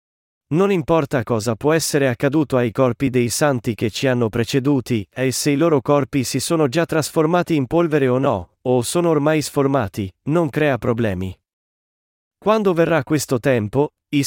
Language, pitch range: Italian, 125-160 Hz